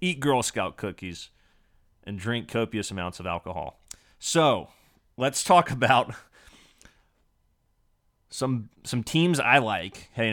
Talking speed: 115 wpm